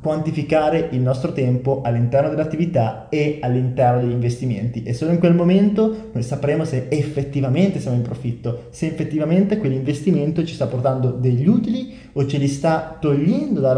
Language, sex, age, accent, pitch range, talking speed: Italian, male, 20-39, native, 130-165 Hz, 155 wpm